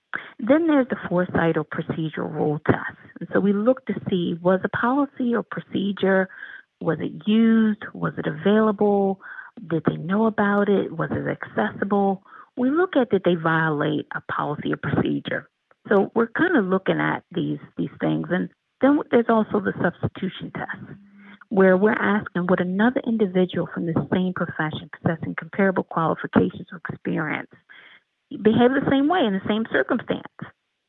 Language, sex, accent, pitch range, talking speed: English, female, American, 175-225 Hz, 160 wpm